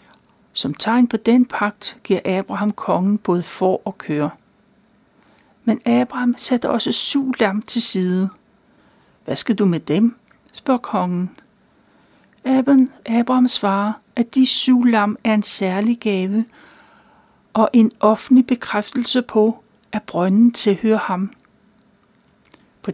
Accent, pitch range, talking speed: native, 195-235 Hz, 120 wpm